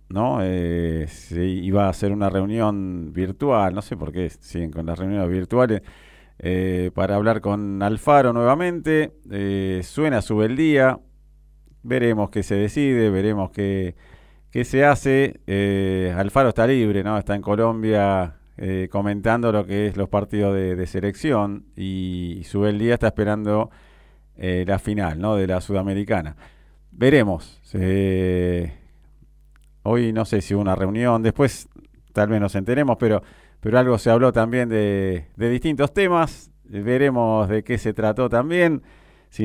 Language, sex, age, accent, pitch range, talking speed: Spanish, male, 40-59, Argentinian, 95-115 Hz, 155 wpm